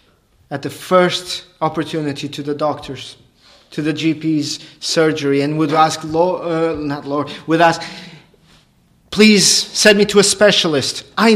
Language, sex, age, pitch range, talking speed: English, male, 40-59, 145-195 Hz, 145 wpm